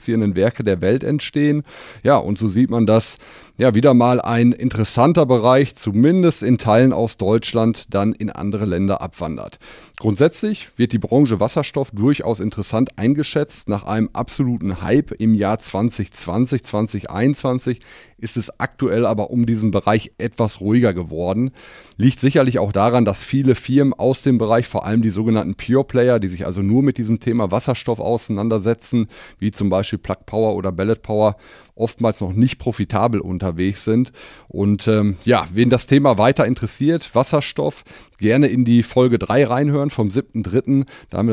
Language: German